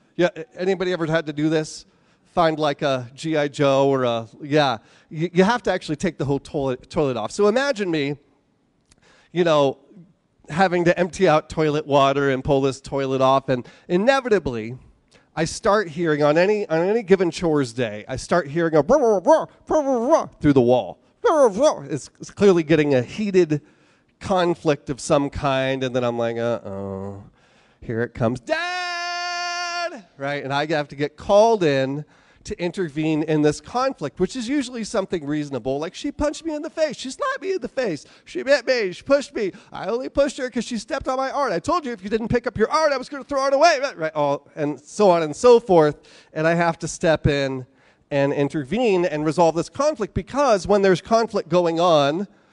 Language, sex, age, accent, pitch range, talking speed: English, male, 30-49, American, 145-225 Hz, 195 wpm